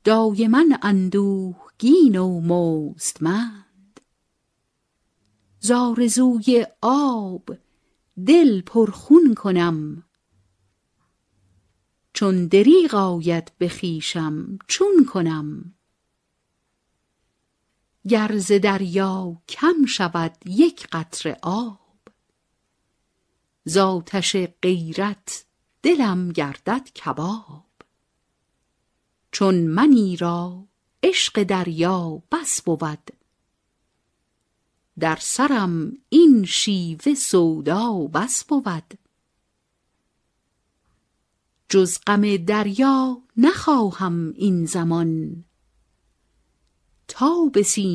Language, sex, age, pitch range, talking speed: Persian, female, 50-69, 160-220 Hz, 65 wpm